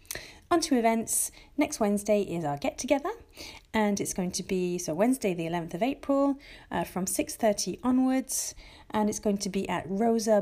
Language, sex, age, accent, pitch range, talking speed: English, female, 40-59, British, 180-230 Hz, 175 wpm